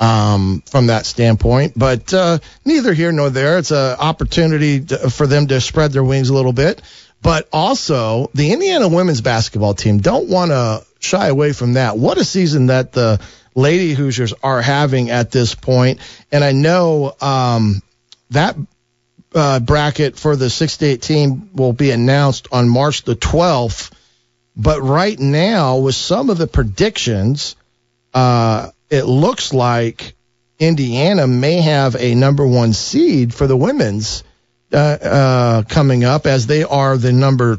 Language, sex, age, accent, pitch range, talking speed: English, male, 40-59, American, 120-145 Hz, 155 wpm